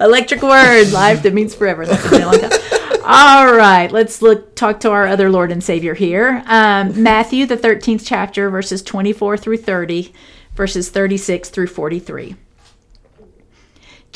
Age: 50-69